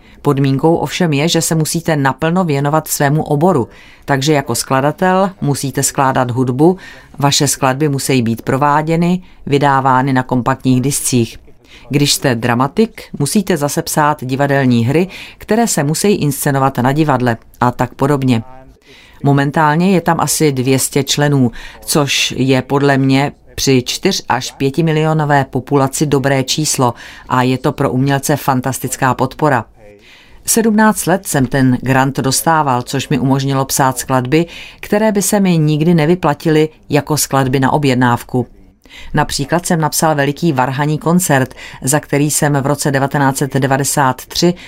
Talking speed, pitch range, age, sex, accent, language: 135 wpm, 130-155 Hz, 40-59, female, native, Czech